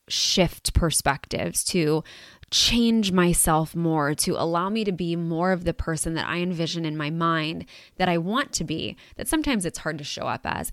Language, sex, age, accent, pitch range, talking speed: English, female, 20-39, American, 155-185 Hz, 190 wpm